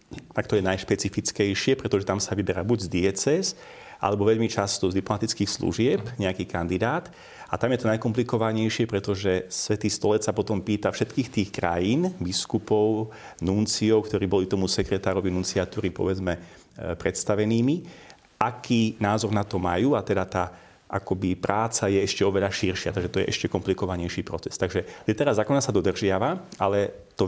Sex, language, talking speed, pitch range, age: male, Slovak, 150 wpm, 95-115 Hz, 30-49